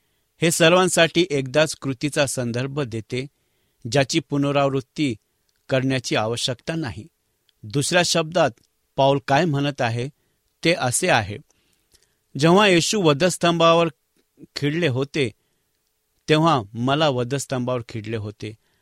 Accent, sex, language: Indian, male, English